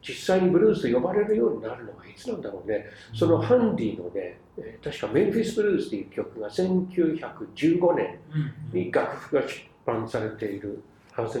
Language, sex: Japanese, male